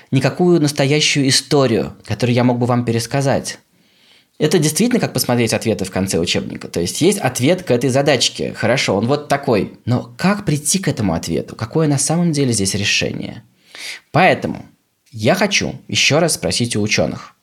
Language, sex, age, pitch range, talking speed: Russian, male, 20-39, 105-145 Hz, 165 wpm